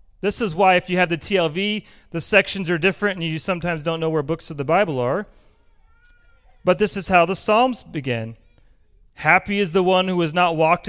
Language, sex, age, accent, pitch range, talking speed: English, male, 40-59, American, 155-210 Hz, 210 wpm